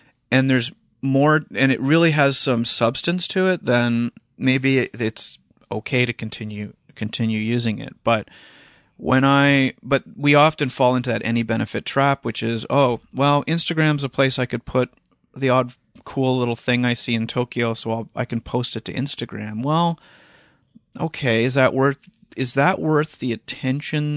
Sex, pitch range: male, 120-140 Hz